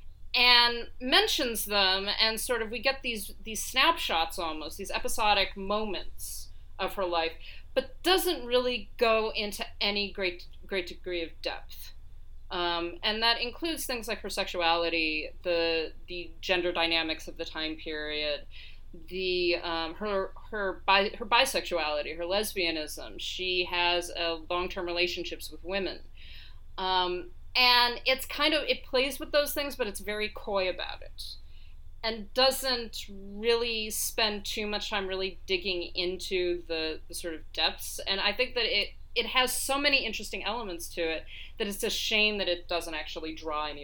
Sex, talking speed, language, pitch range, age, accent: female, 155 wpm, English, 170-235 Hz, 40-59, American